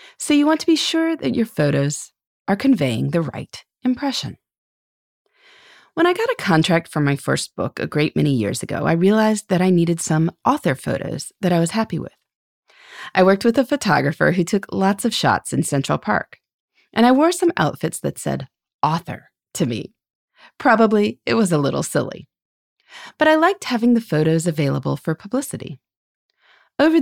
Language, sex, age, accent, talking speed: English, female, 30-49, American, 180 wpm